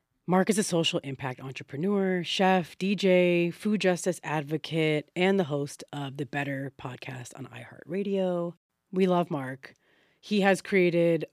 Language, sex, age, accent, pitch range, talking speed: English, female, 30-49, American, 145-180 Hz, 140 wpm